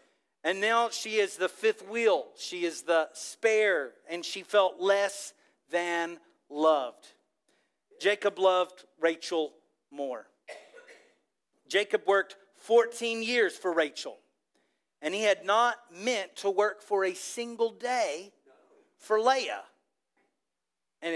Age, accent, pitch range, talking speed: 40-59, American, 170-220 Hz, 115 wpm